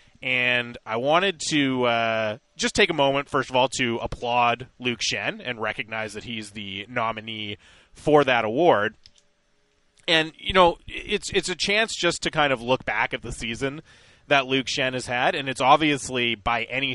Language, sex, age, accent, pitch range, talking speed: English, male, 20-39, American, 110-145 Hz, 180 wpm